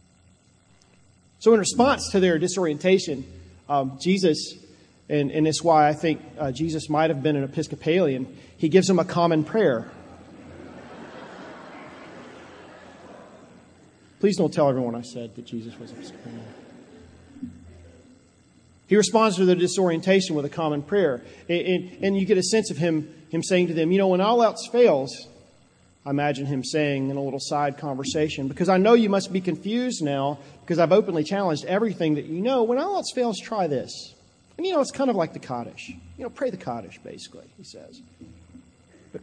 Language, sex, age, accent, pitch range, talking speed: English, male, 40-59, American, 125-185 Hz, 175 wpm